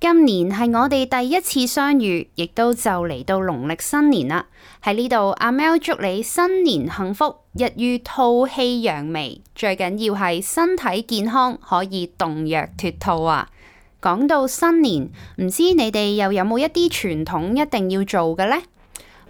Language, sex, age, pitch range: Chinese, female, 20-39, 180-260 Hz